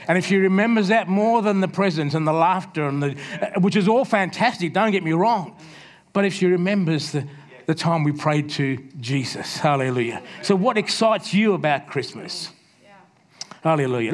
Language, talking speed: English, 175 wpm